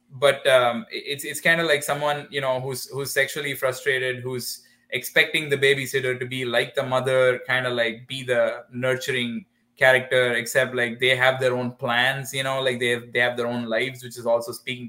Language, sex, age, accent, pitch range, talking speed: English, male, 20-39, Indian, 120-140 Hz, 205 wpm